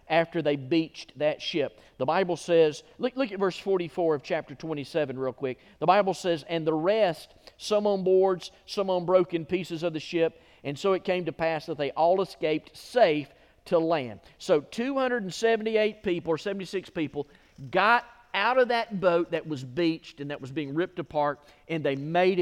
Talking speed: 185 wpm